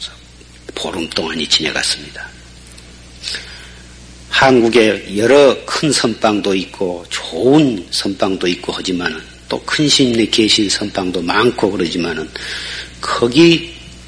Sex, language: male, Korean